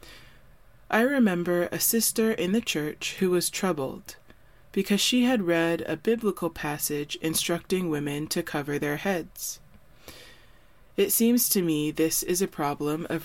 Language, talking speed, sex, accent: English, 145 wpm, female, American